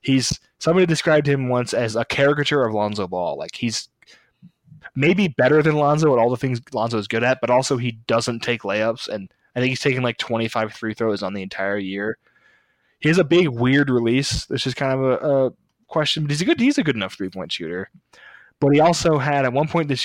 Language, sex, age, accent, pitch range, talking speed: English, male, 20-39, American, 115-150 Hz, 225 wpm